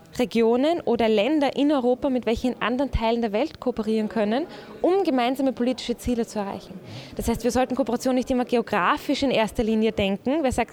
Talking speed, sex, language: 185 wpm, female, German